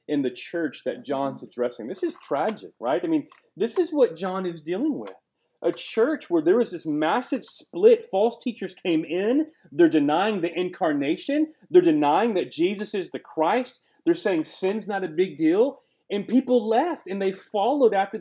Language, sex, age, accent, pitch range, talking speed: English, male, 30-49, American, 165-265 Hz, 185 wpm